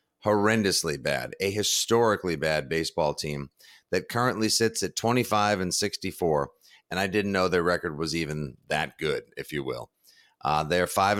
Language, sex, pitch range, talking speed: English, male, 85-115 Hz, 160 wpm